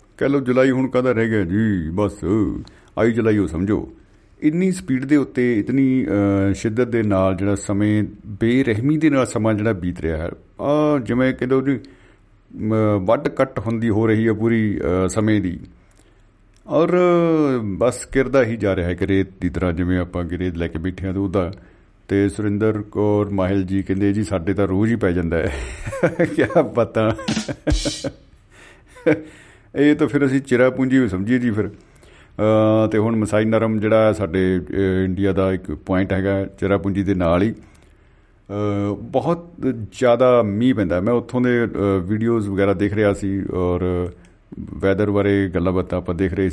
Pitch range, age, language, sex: 95-120 Hz, 50-69, Punjabi, male